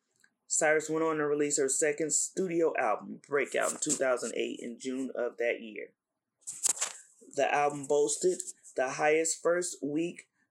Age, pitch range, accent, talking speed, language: 20-39, 145-180 Hz, American, 135 wpm, English